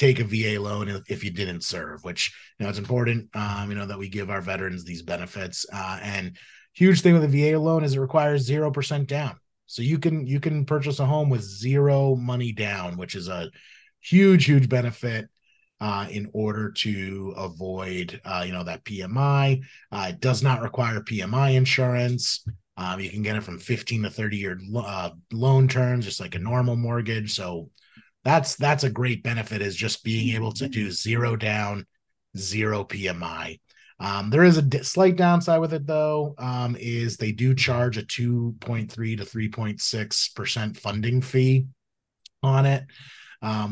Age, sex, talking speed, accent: 30-49, male, 180 wpm, American